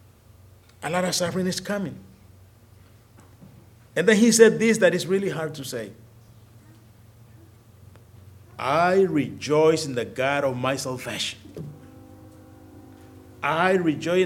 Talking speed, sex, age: 115 wpm, male, 50-69